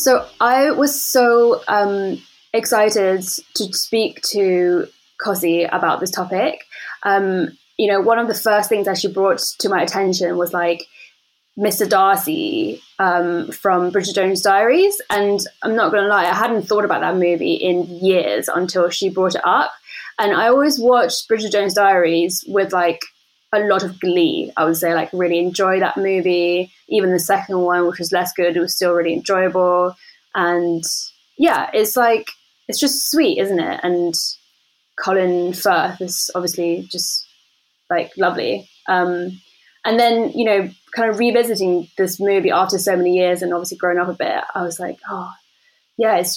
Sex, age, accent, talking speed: female, 10-29, British, 170 wpm